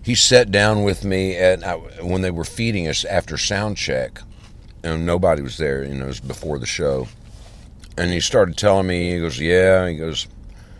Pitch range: 75-95 Hz